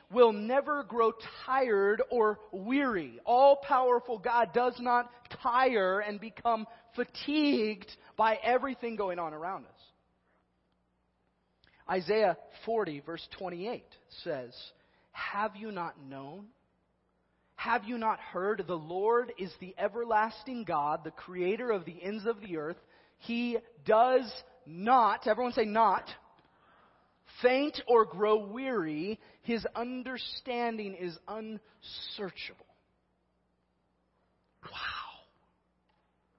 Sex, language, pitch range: male, English, 180-245 Hz